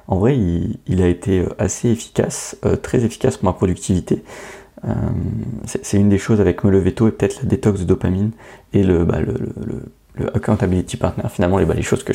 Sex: male